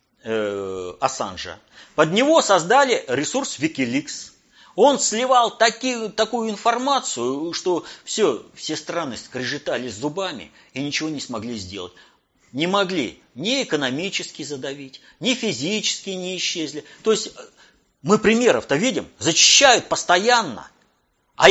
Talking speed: 110 wpm